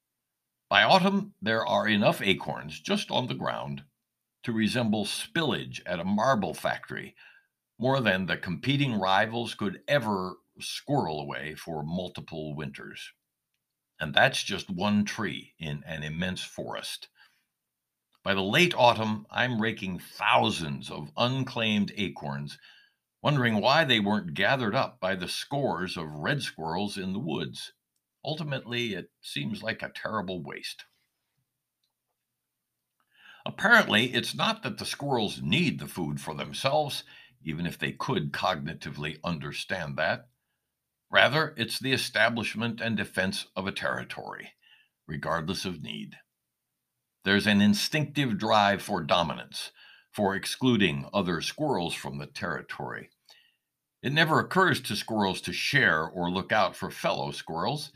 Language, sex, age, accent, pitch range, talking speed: English, male, 60-79, American, 75-125 Hz, 130 wpm